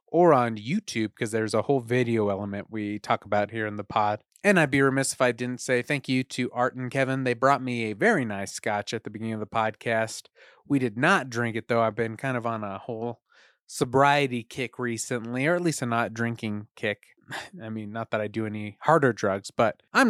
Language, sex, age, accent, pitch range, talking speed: English, male, 30-49, American, 110-130 Hz, 230 wpm